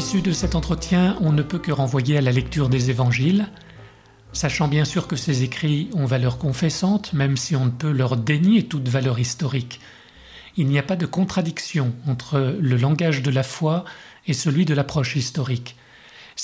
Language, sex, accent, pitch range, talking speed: French, male, French, 130-165 Hz, 185 wpm